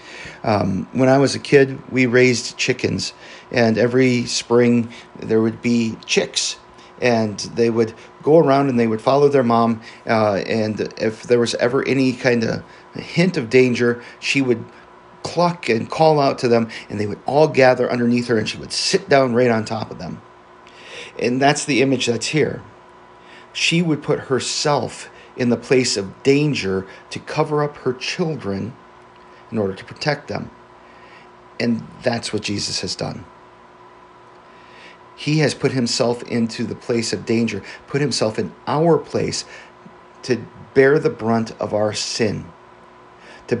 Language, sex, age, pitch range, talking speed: English, male, 40-59, 115-135 Hz, 160 wpm